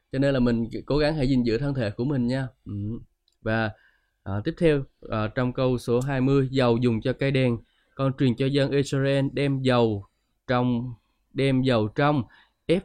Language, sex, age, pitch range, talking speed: Vietnamese, male, 20-39, 115-140 Hz, 185 wpm